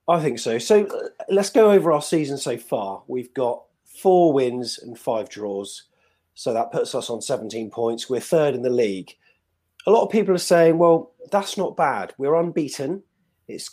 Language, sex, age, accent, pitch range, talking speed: English, male, 30-49, British, 115-180 Hz, 190 wpm